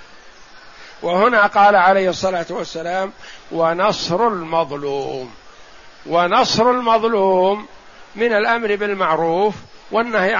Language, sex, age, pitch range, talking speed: Arabic, male, 60-79, 185-230 Hz, 75 wpm